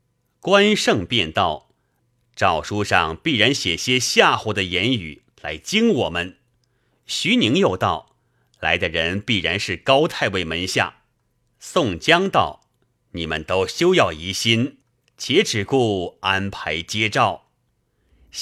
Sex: male